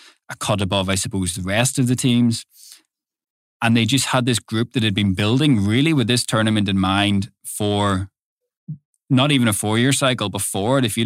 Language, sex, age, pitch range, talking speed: English, male, 20-39, 95-120 Hz, 195 wpm